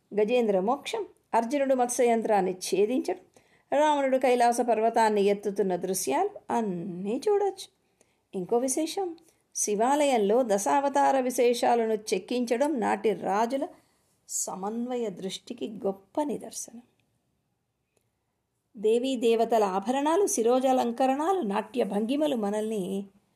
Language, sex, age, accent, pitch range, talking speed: Telugu, female, 50-69, native, 220-285 Hz, 80 wpm